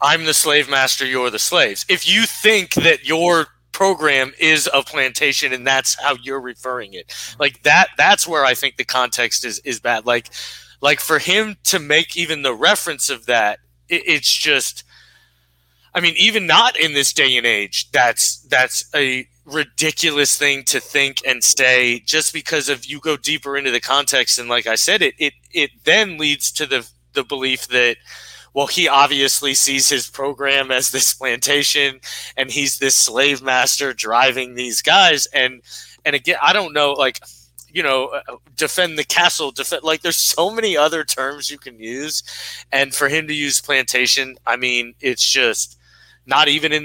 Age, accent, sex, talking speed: 20-39, American, male, 180 wpm